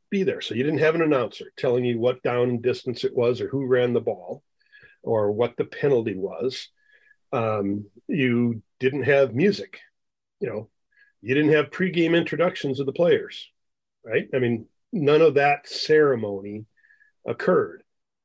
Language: English